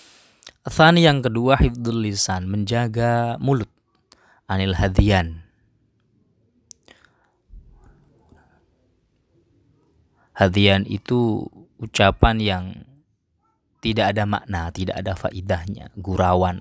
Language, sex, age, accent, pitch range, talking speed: Indonesian, male, 20-39, native, 90-110 Hz, 70 wpm